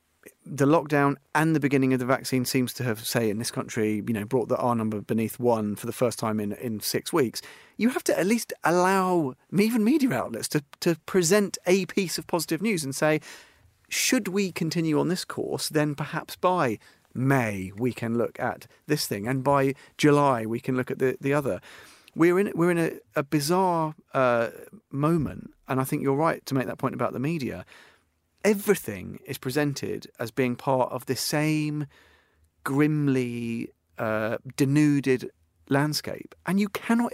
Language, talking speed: English, 185 wpm